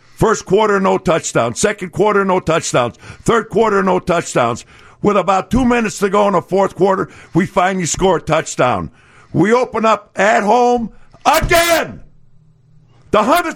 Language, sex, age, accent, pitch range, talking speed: English, male, 50-69, American, 160-250 Hz, 150 wpm